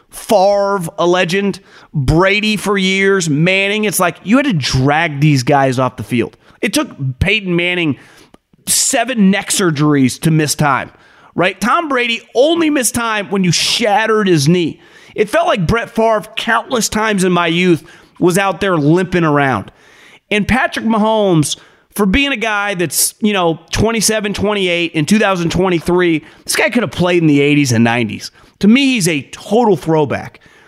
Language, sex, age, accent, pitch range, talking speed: English, male, 30-49, American, 155-195 Hz, 160 wpm